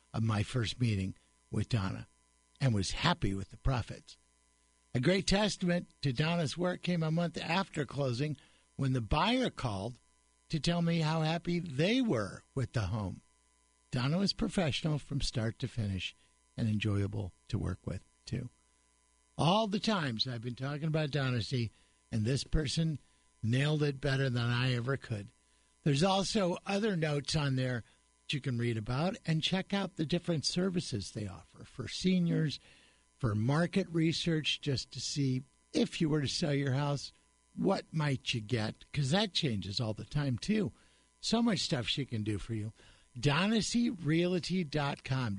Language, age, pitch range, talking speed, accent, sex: English, 60-79, 110-170 Hz, 160 wpm, American, male